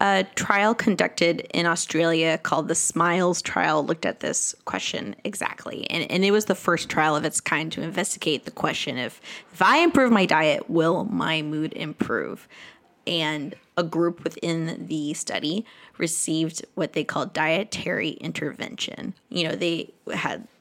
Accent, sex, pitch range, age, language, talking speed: American, female, 155-190 Hz, 20-39, English, 155 wpm